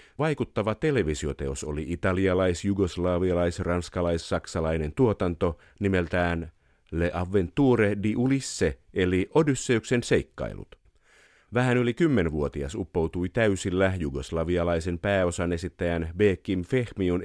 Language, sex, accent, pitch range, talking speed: Finnish, male, native, 85-110 Hz, 90 wpm